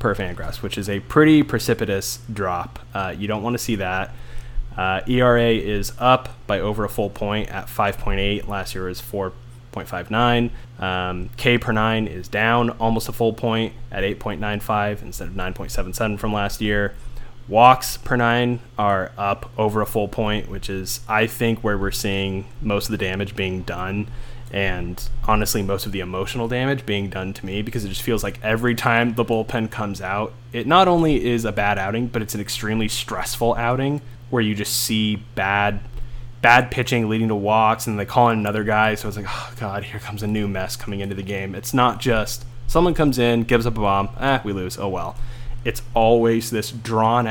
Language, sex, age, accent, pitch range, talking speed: English, male, 20-39, American, 100-120 Hz, 195 wpm